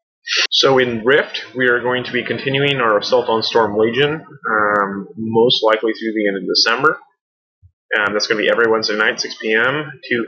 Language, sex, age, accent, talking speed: English, male, 20-39, American, 195 wpm